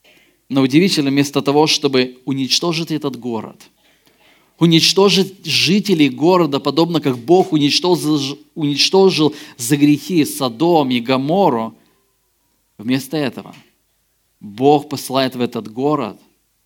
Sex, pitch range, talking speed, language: male, 125-150 Hz, 95 wpm, Russian